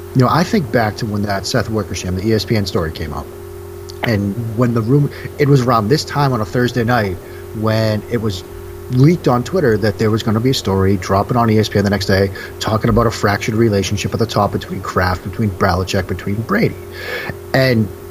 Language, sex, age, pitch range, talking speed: English, male, 40-59, 100-140 Hz, 210 wpm